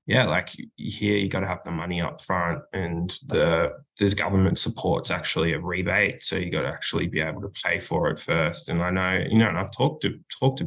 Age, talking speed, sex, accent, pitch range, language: 20-39, 225 wpm, male, Australian, 90-110 Hz, English